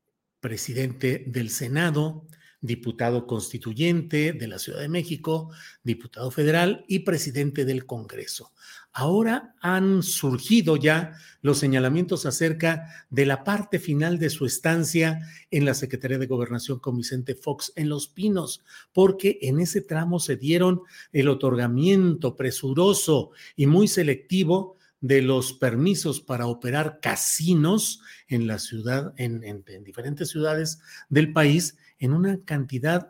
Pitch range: 130-170 Hz